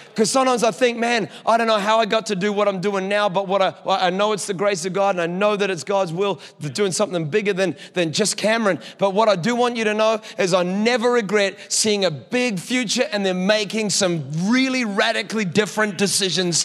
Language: English